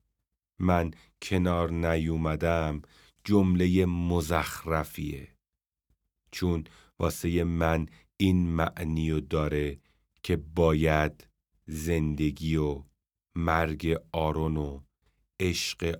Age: 40-59